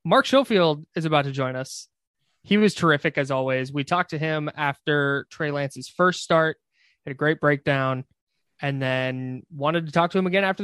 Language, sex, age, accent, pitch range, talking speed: English, male, 20-39, American, 130-155 Hz, 190 wpm